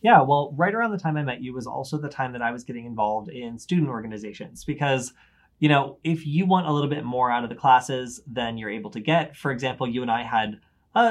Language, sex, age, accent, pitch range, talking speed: English, male, 20-39, American, 120-155 Hz, 255 wpm